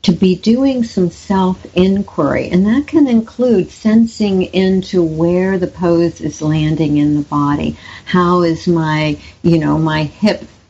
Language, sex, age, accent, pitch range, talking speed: English, female, 60-79, American, 160-205 Hz, 150 wpm